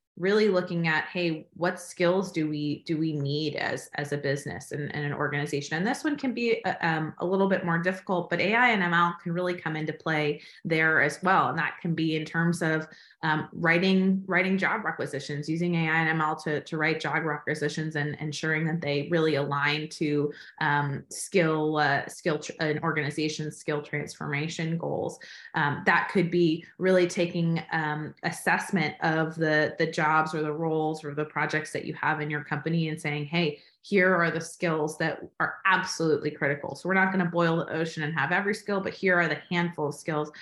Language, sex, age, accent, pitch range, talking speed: English, female, 20-39, American, 150-175 Hz, 205 wpm